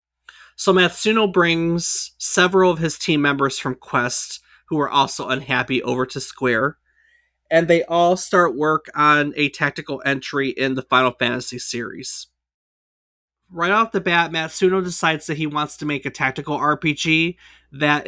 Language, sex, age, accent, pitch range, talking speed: English, male, 30-49, American, 130-165 Hz, 155 wpm